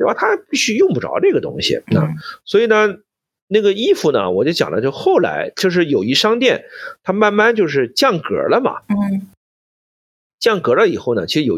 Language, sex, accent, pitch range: Chinese, male, native, 145-235 Hz